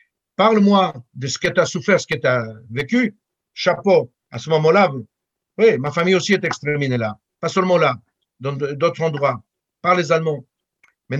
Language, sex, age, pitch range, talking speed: French, male, 60-79, 150-190 Hz, 175 wpm